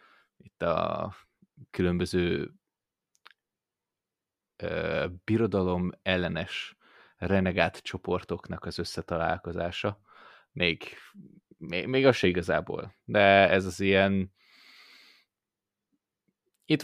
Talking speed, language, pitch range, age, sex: 70 wpm, Hungarian, 90-105 Hz, 20-39, male